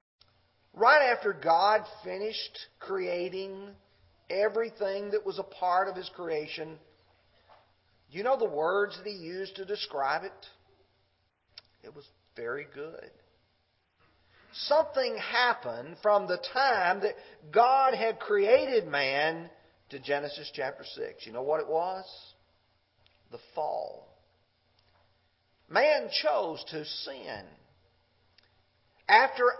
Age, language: 40-59, English